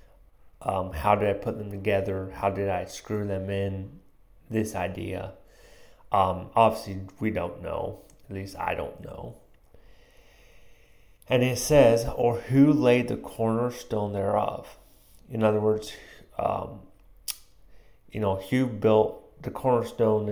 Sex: male